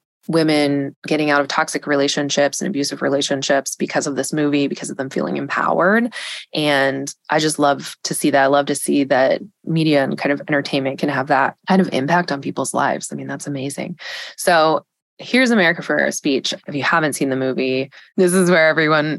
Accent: American